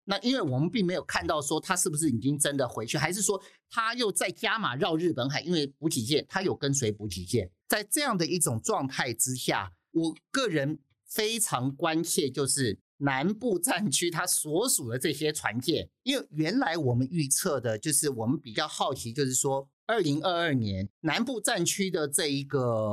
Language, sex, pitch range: Chinese, male, 135-190 Hz